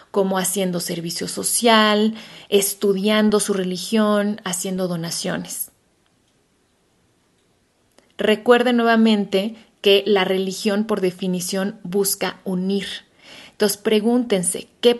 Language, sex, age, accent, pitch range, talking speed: Spanish, female, 30-49, Mexican, 190-225 Hz, 85 wpm